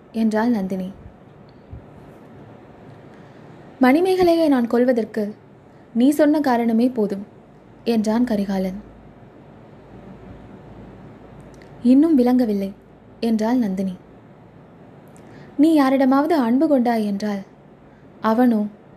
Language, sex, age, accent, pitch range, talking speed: Tamil, female, 20-39, native, 220-280 Hz, 65 wpm